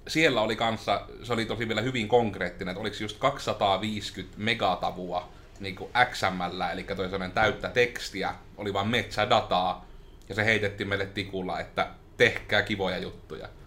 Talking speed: 140 wpm